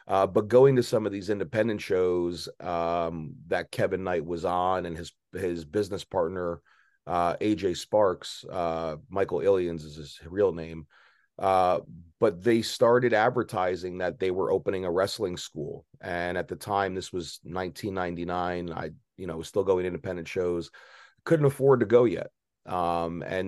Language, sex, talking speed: English, male, 165 wpm